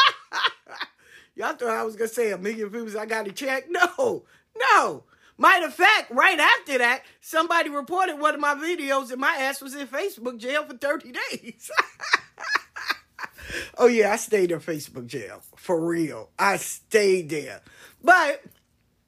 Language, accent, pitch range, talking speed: English, American, 195-265 Hz, 160 wpm